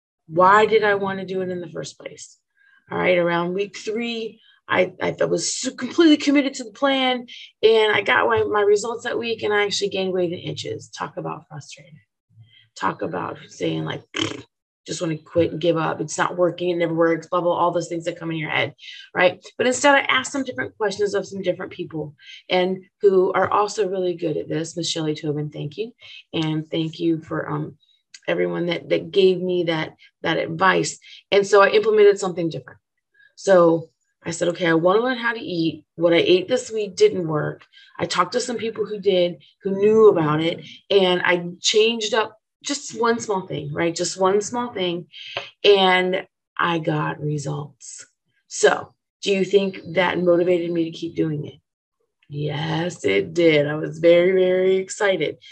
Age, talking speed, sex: 30-49, 190 wpm, female